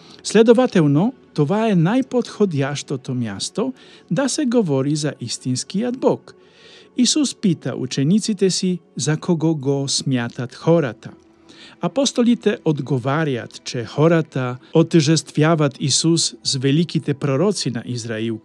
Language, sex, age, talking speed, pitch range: Polish, male, 50-69, 105 wpm, 130-175 Hz